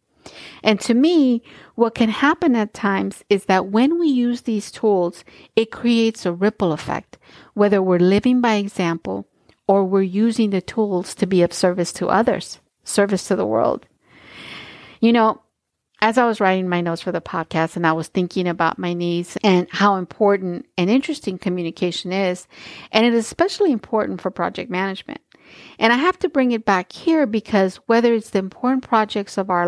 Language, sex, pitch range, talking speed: English, female, 180-230 Hz, 180 wpm